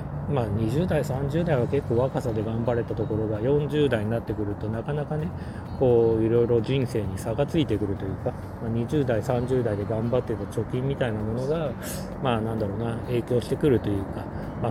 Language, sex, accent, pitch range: Japanese, male, native, 110-135 Hz